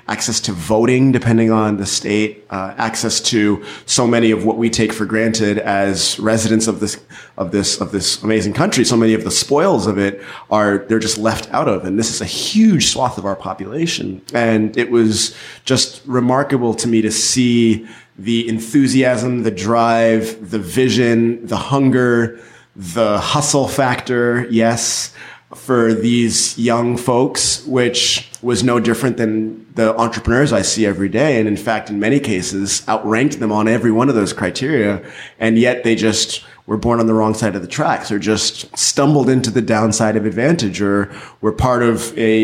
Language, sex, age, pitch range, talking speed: English, male, 30-49, 105-120 Hz, 180 wpm